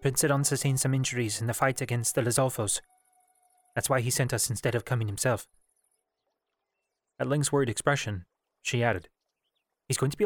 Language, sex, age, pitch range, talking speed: English, male, 30-49, 110-140 Hz, 175 wpm